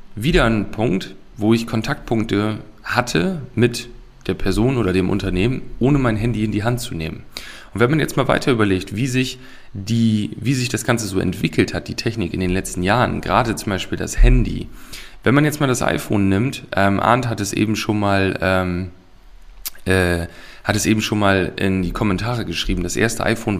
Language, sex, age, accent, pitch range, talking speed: German, male, 40-59, German, 95-120 Hz, 195 wpm